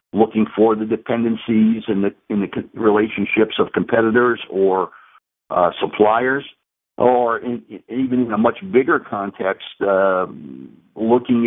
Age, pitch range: 60-79, 100-120 Hz